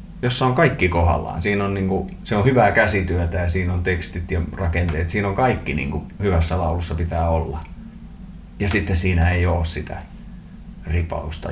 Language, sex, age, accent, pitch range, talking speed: Finnish, male, 30-49, native, 85-105 Hz, 145 wpm